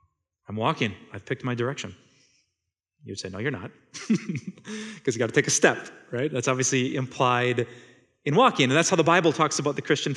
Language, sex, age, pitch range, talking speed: English, male, 30-49, 130-185 Hz, 200 wpm